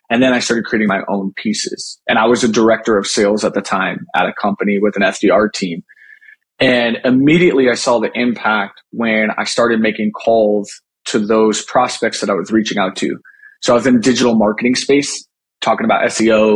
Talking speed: 205 wpm